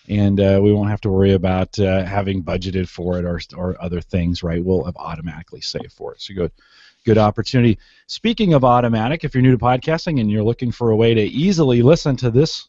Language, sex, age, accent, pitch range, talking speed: English, male, 30-49, American, 100-135 Hz, 220 wpm